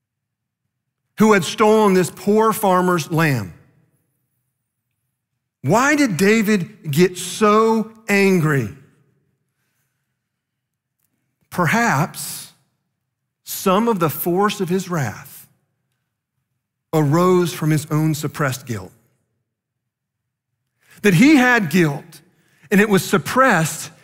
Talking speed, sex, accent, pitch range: 85 wpm, male, American, 130-185 Hz